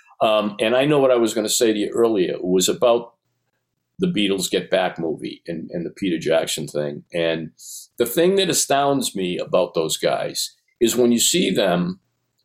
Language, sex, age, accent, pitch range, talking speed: English, male, 50-69, American, 95-135 Hz, 190 wpm